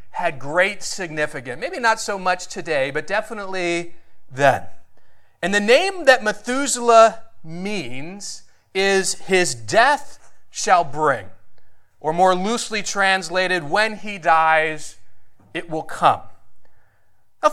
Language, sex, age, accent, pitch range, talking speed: English, male, 30-49, American, 175-225 Hz, 115 wpm